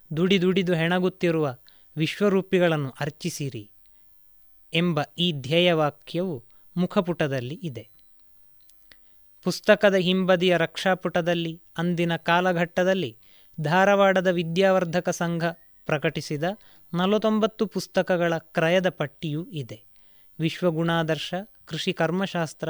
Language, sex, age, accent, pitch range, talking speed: Kannada, male, 30-49, native, 160-190 Hz, 70 wpm